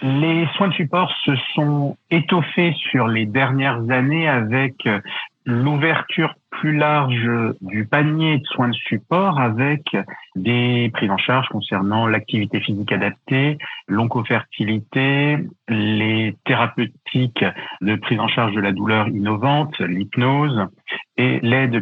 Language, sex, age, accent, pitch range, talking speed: French, male, 50-69, French, 120-160 Hz, 120 wpm